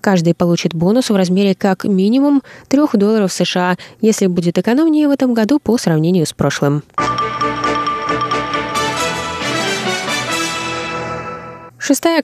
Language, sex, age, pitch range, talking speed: Russian, female, 20-39, 170-225 Hz, 105 wpm